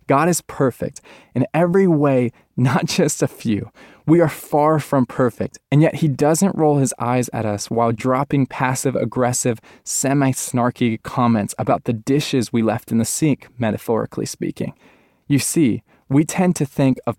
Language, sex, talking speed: English, male, 160 wpm